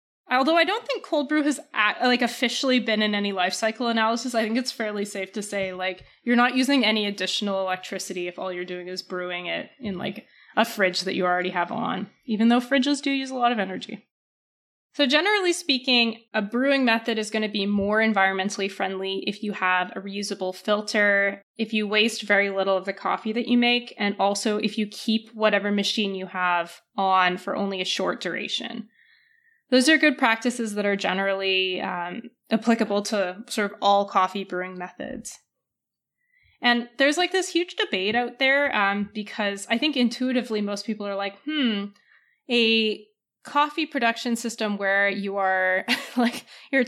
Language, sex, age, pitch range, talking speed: English, female, 20-39, 195-240 Hz, 180 wpm